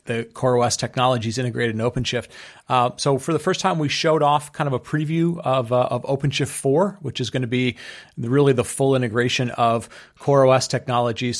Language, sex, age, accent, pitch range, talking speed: English, male, 40-59, American, 120-140 Hz, 190 wpm